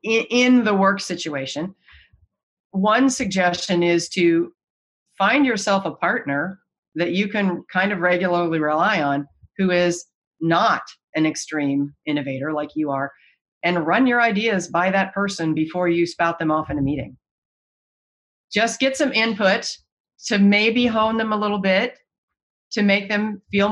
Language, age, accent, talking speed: English, 40-59, American, 150 wpm